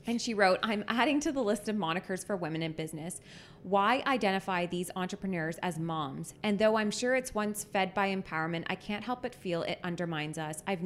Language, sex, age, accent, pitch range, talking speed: English, female, 20-39, American, 165-205 Hz, 210 wpm